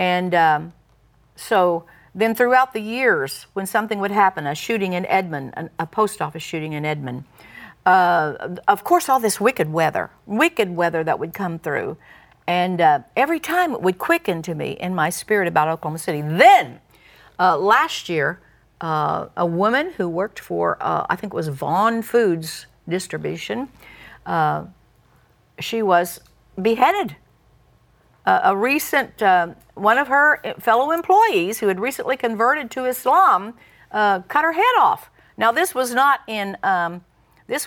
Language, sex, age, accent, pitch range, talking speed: English, female, 50-69, American, 170-250 Hz, 155 wpm